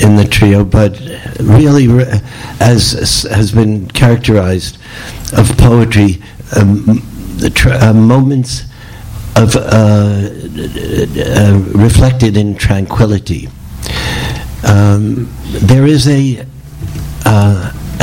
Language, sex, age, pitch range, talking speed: English, male, 60-79, 100-125 Hz, 90 wpm